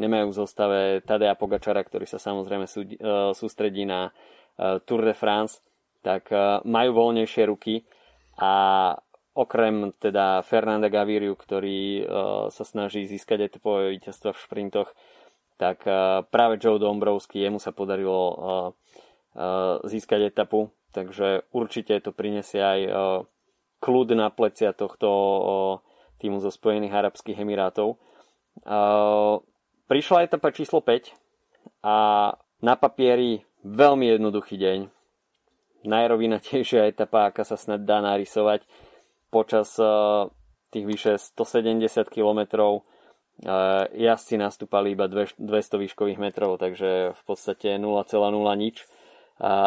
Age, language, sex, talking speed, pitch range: 20-39, Slovak, male, 120 wpm, 100-110 Hz